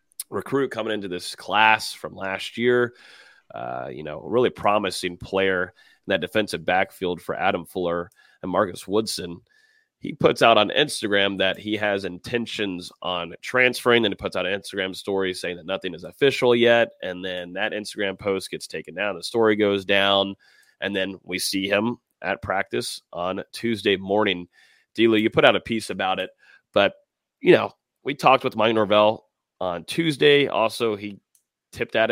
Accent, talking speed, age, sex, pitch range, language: American, 175 wpm, 30-49, male, 95-120 Hz, English